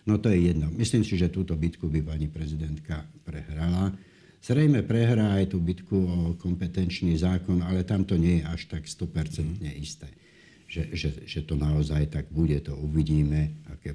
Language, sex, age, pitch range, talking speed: Slovak, male, 60-79, 80-95 Hz, 170 wpm